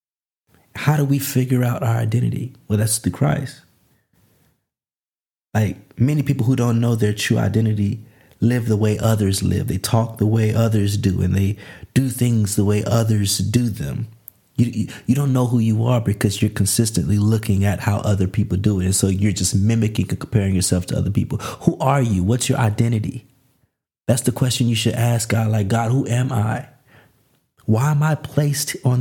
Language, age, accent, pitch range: English, 30-49, American, 110-130 Hz